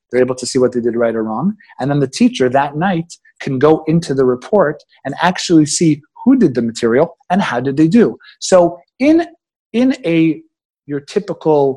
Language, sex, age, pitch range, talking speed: English, male, 30-49, 130-175 Hz, 200 wpm